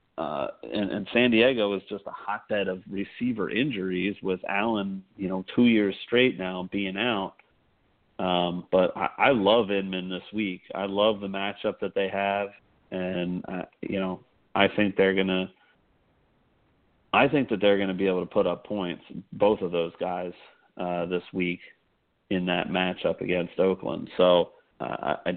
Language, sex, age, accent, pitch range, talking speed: English, male, 40-59, American, 95-105 Hz, 170 wpm